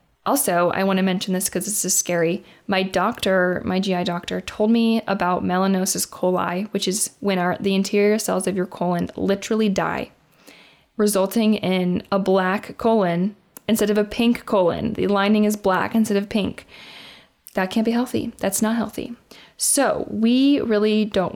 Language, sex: English, female